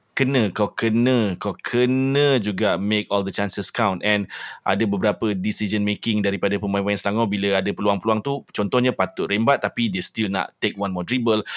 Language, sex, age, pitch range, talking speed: Malay, male, 30-49, 100-120 Hz, 175 wpm